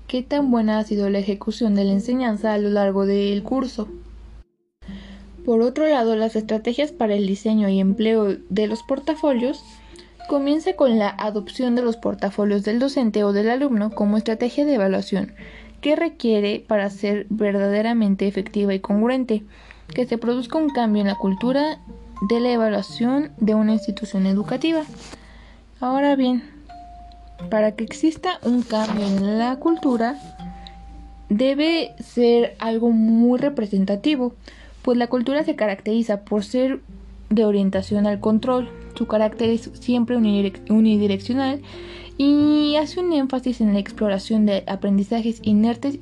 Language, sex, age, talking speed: Spanish, female, 20-39, 140 wpm